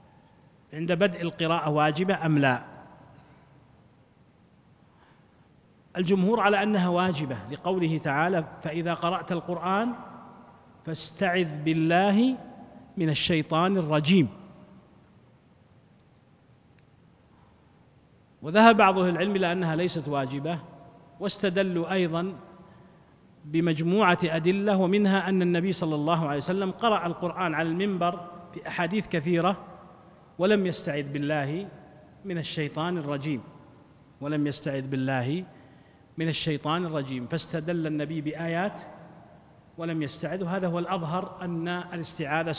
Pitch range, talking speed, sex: 155-185 Hz, 95 wpm, male